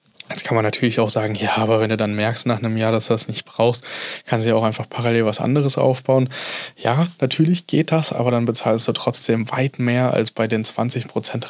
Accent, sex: German, male